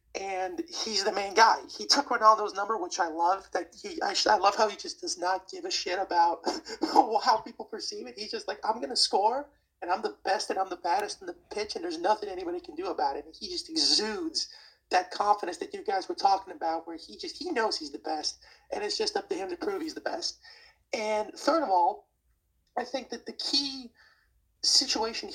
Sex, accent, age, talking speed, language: male, American, 30-49, 225 wpm, English